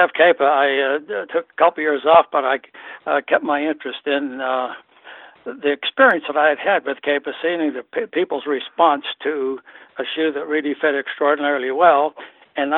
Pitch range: 140-155 Hz